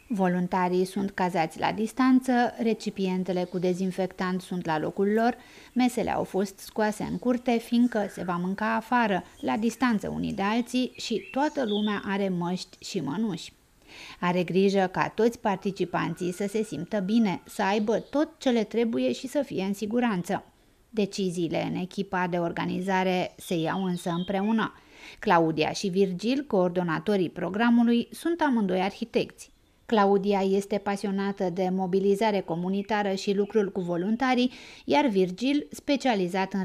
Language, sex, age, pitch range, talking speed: Romanian, female, 30-49, 185-235 Hz, 140 wpm